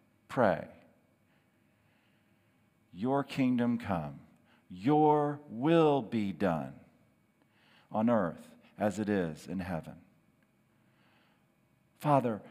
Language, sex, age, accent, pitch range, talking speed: English, male, 50-69, American, 125-170 Hz, 75 wpm